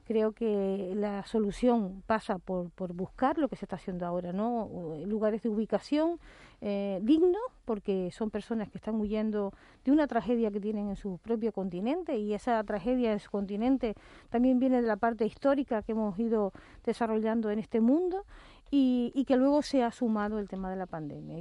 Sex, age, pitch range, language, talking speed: female, 40-59, 205-240 Hz, Spanish, 185 wpm